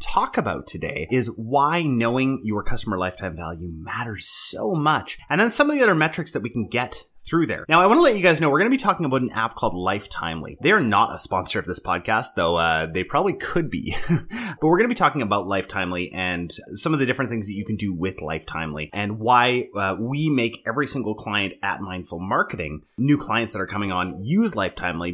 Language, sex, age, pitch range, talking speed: English, male, 30-49, 95-145 Hz, 230 wpm